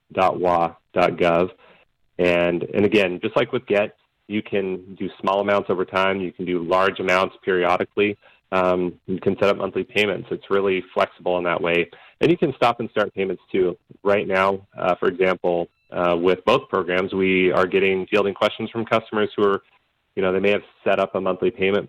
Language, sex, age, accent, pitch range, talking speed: English, male, 30-49, American, 90-100 Hz, 195 wpm